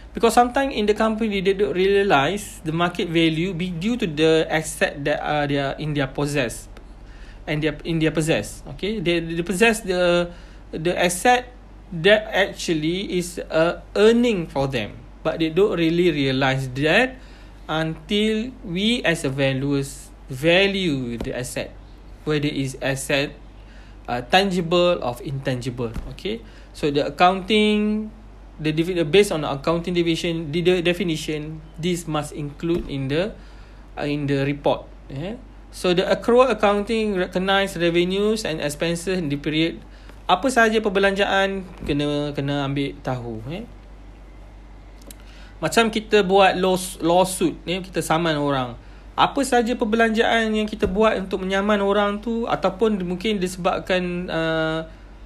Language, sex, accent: English, male, Malaysian